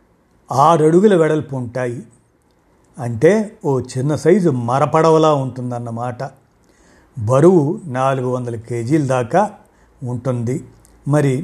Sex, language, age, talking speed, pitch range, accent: male, Telugu, 50-69, 90 wpm, 125-165 Hz, native